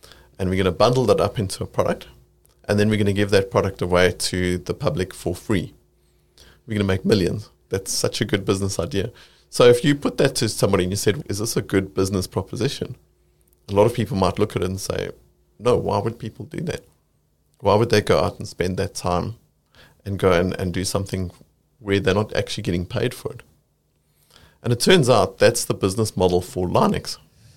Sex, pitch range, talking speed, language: male, 90-110 Hz, 220 wpm, English